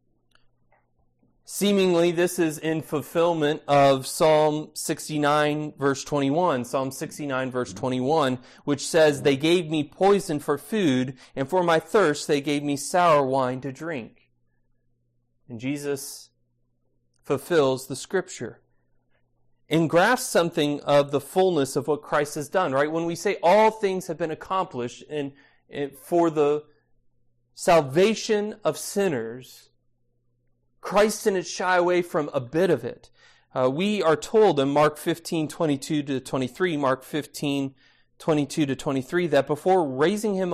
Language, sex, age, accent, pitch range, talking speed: English, male, 30-49, American, 130-165 Hz, 140 wpm